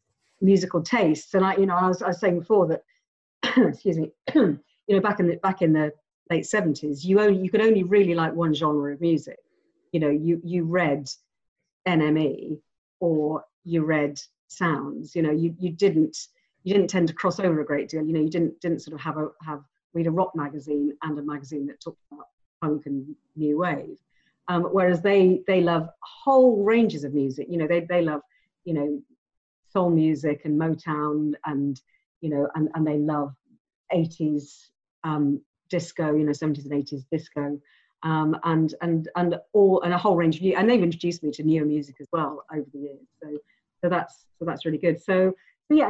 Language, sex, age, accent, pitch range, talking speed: English, female, 50-69, British, 150-185 Hz, 200 wpm